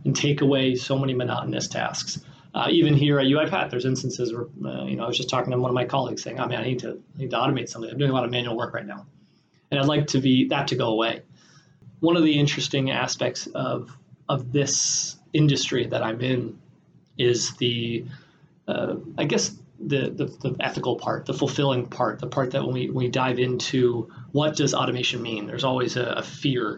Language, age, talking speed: English, 30-49, 220 wpm